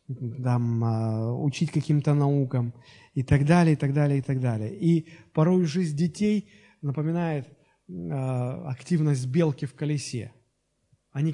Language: Russian